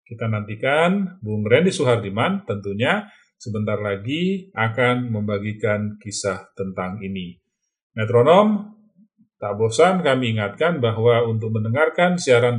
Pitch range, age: 105-160 Hz, 40-59